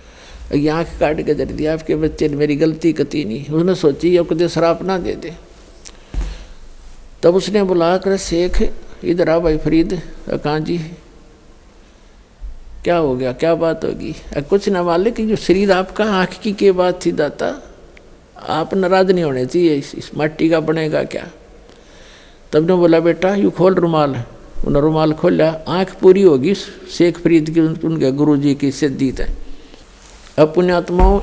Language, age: Hindi, 60-79